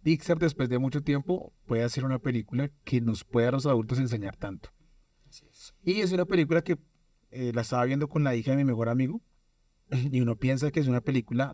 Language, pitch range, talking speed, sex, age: Spanish, 120-150 Hz, 210 wpm, male, 30-49